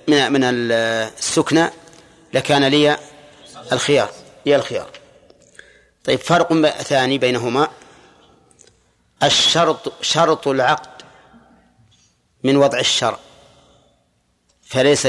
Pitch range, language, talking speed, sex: 130-160 Hz, Arabic, 70 wpm, male